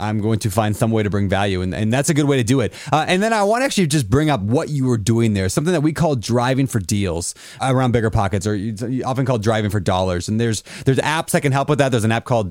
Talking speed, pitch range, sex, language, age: 300 wpm, 110-145 Hz, male, English, 30-49